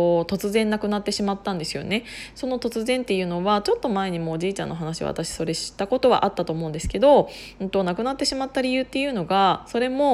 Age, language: 20-39, Japanese